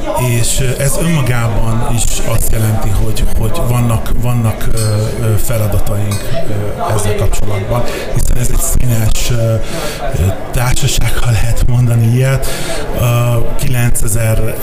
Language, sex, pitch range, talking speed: Hungarian, male, 105-120 Hz, 100 wpm